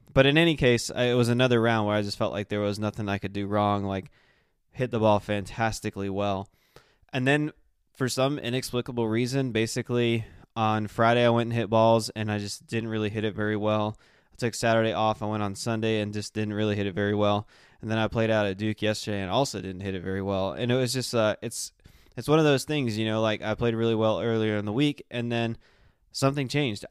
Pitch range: 105-125 Hz